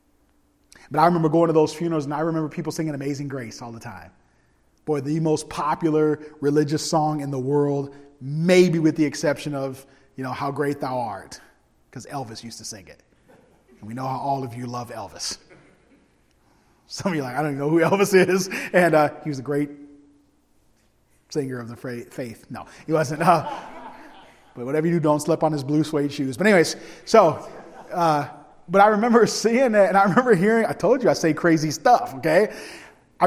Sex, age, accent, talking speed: male, 30-49, American, 200 wpm